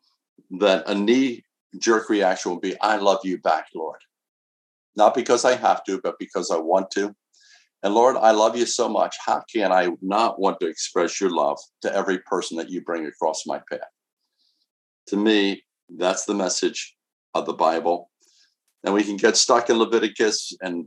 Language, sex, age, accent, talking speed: English, male, 60-79, American, 180 wpm